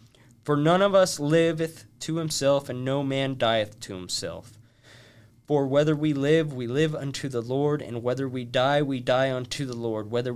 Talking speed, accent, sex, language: 185 wpm, American, male, English